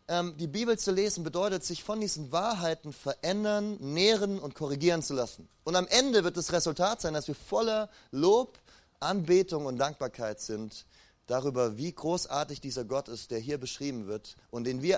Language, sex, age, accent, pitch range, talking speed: German, male, 30-49, German, 135-200 Hz, 170 wpm